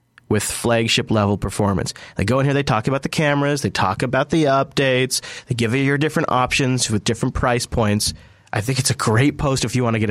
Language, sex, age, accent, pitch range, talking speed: English, male, 30-49, American, 115-140 Hz, 225 wpm